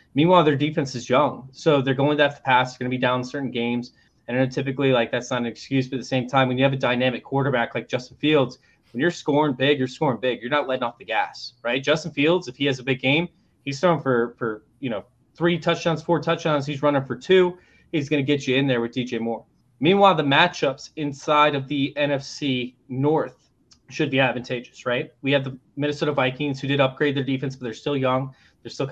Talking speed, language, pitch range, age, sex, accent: 235 wpm, English, 130-150 Hz, 20-39, male, American